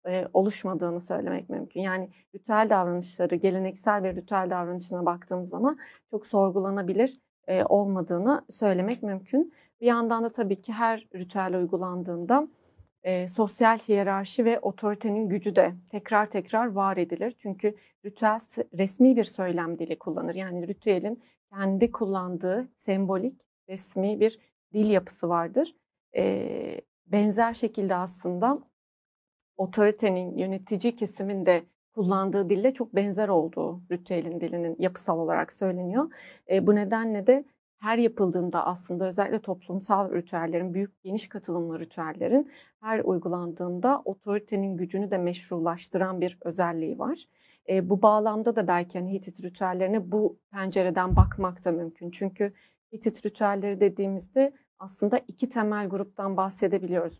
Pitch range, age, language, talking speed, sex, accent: 180-220 Hz, 30-49, Turkish, 120 wpm, female, native